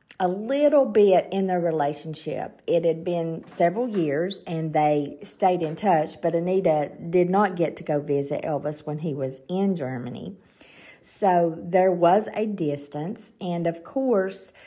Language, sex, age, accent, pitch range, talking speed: English, female, 50-69, American, 155-200 Hz, 155 wpm